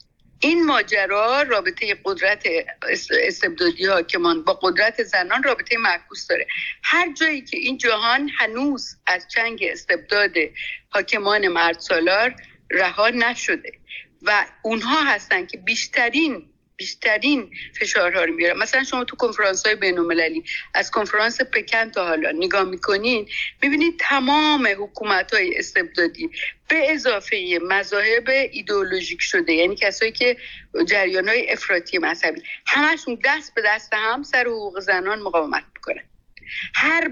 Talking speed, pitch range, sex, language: 125 wpm, 195-295 Hz, female, Persian